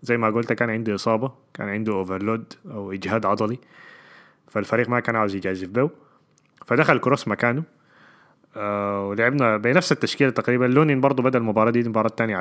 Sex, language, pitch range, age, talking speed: male, Arabic, 105-130 Hz, 20-39, 160 wpm